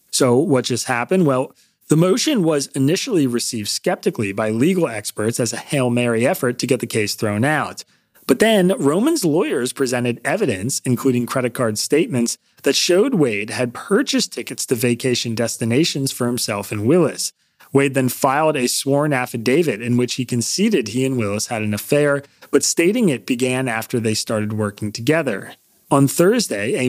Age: 30-49